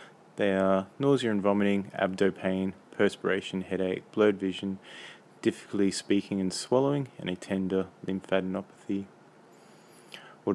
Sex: male